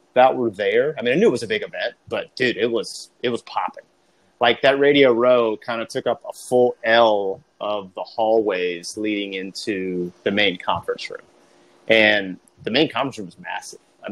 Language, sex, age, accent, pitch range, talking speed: English, male, 30-49, American, 105-125 Hz, 200 wpm